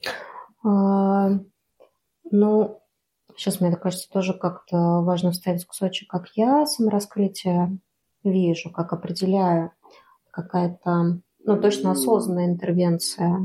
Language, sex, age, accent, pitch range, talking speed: Russian, female, 20-39, native, 180-220 Hz, 95 wpm